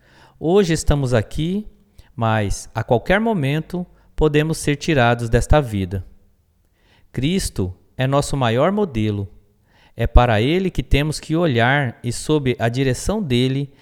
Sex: male